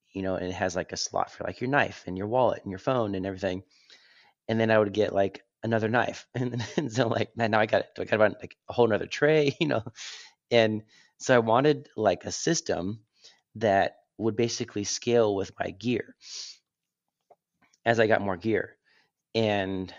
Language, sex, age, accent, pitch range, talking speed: English, male, 30-49, American, 95-115 Hz, 205 wpm